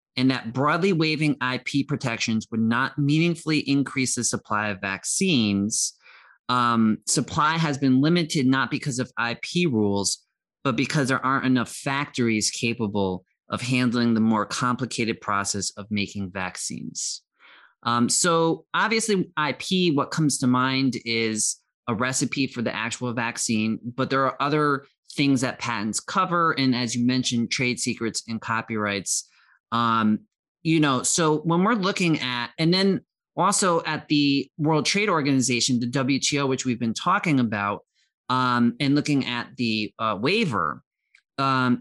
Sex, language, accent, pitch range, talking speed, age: male, English, American, 115-145 Hz, 145 wpm, 30-49